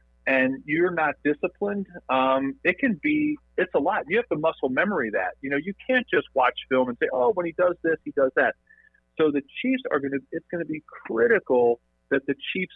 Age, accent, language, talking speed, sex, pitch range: 40-59, American, English, 235 wpm, male, 120-160 Hz